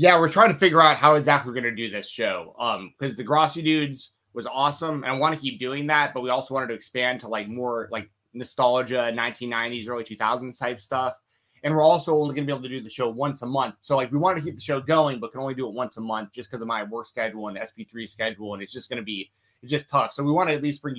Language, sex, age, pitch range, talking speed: English, male, 20-39, 115-145 Hz, 290 wpm